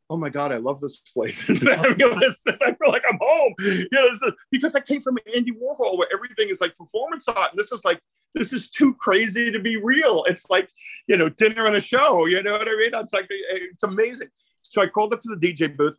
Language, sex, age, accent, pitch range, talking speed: English, male, 40-59, American, 145-235 Hz, 235 wpm